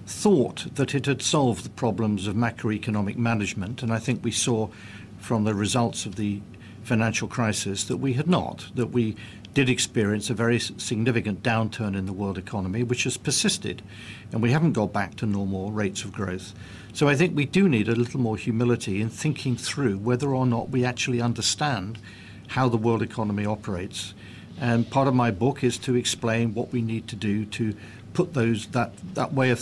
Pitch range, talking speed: 105-125 Hz, 190 wpm